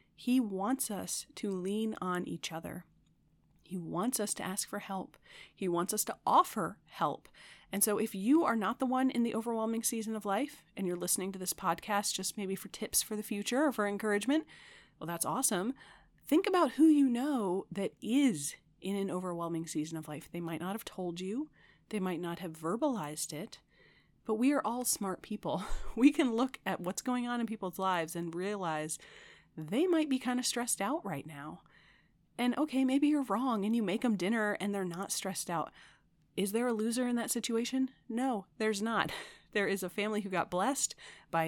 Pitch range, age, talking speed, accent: 175-240 Hz, 30-49, 200 wpm, American